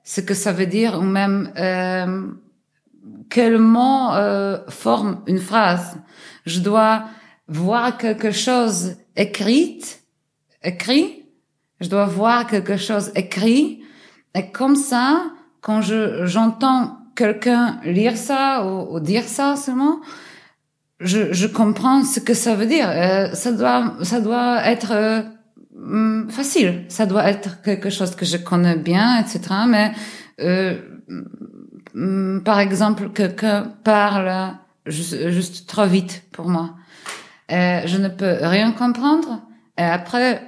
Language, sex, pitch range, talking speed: French, female, 185-240 Hz, 130 wpm